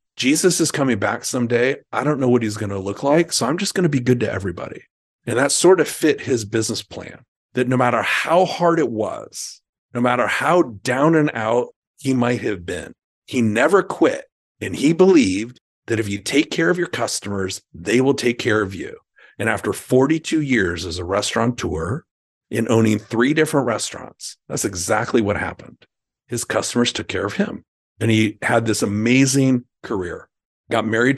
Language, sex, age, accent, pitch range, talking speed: English, male, 40-59, American, 110-140 Hz, 190 wpm